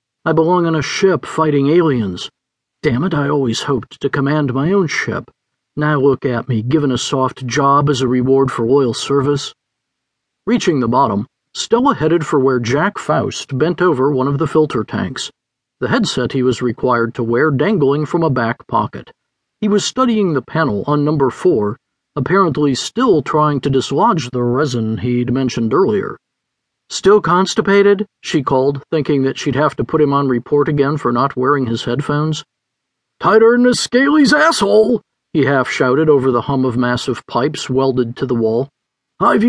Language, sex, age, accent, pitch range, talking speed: English, male, 50-69, American, 130-175 Hz, 175 wpm